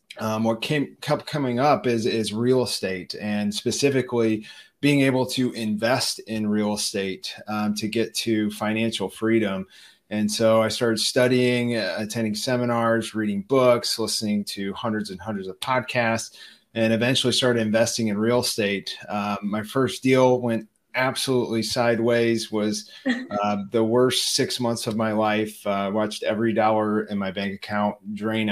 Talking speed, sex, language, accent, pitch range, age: 155 wpm, male, English, American, 105-120 Hz, 30-49